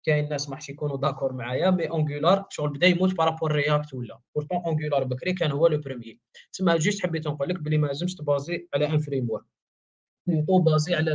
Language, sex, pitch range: Arabic, male, 150-195 Hz